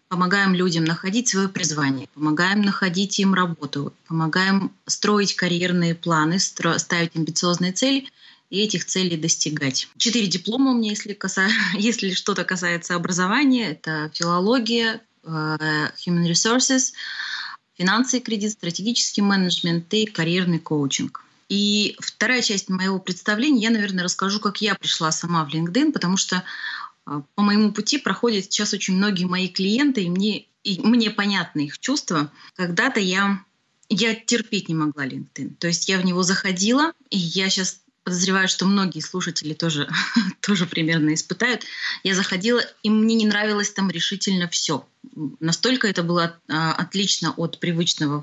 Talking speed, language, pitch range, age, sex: 145 wpm, Russian, 170-220 Hz, 20-39, female